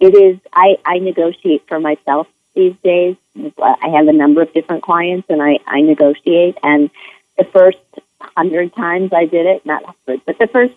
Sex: female